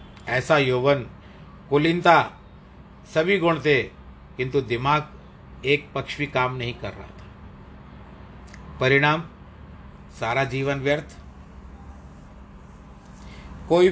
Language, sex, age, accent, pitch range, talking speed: Hindi, male, 50-69, native, 95-145 Hz, 85 wpm